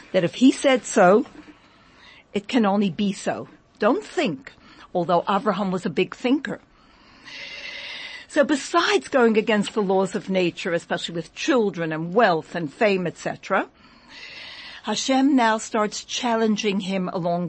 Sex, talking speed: female, 135 wpm